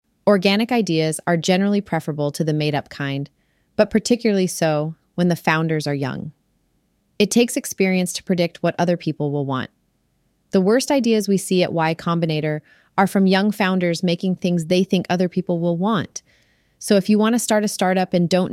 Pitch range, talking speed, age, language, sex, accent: 155-195 Hz, 185 wpm, 30-49, English, female, American